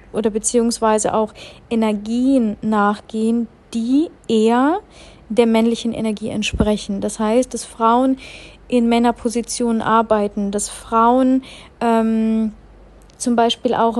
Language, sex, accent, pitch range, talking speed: German, female, German, 220-245 Hz, 105 wpm